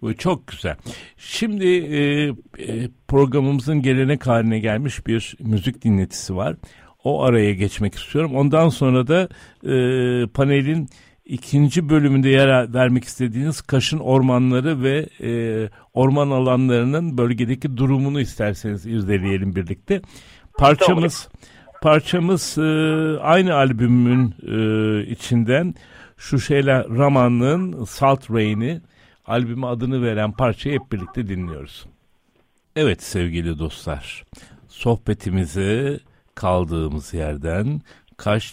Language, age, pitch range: Turkish, 60-79, 95-135 Hz